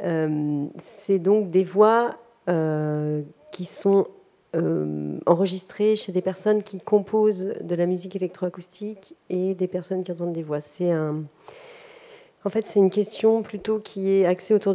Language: French